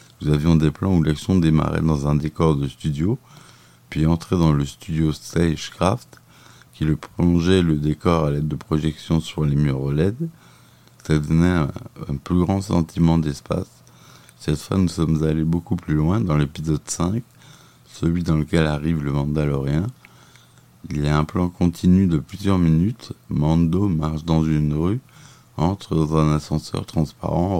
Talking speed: 165 wpm